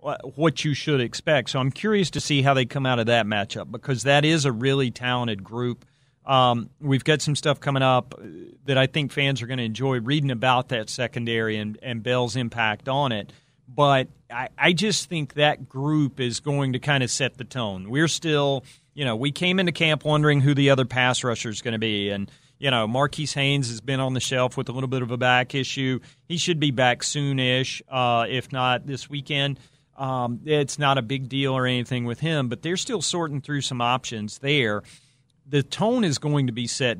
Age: 40-59